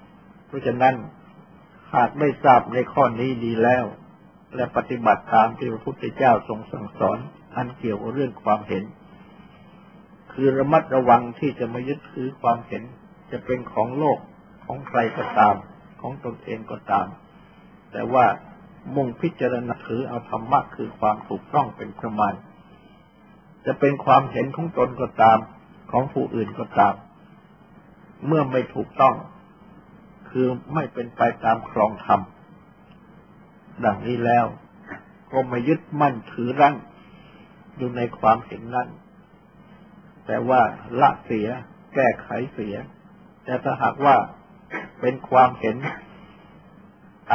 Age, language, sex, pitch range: 60-79, Thai, male, 120-180 Hz